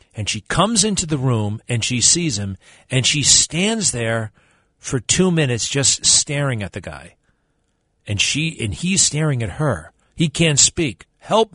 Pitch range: 110-165 Hz